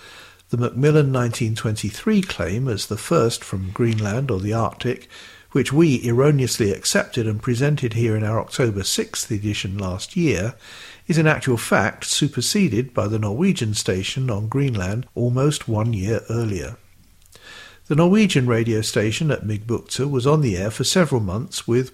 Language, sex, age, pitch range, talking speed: English, male, 50-69, 105-130 Hz, 150 wpm